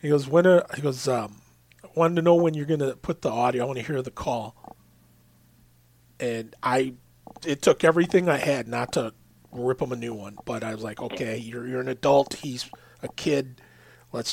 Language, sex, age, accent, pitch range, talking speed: English, male, 40-59, American, 110-145 Hz, 210 wpm